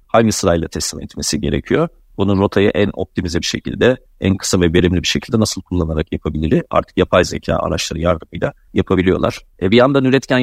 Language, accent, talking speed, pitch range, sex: Turkish, native, 175 wpm, 85-105 Hz, male